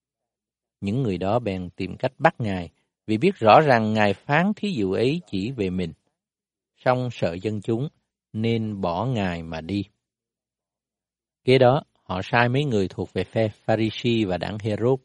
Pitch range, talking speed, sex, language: 100-140 Hz, 170 wpm, male, Vietnamese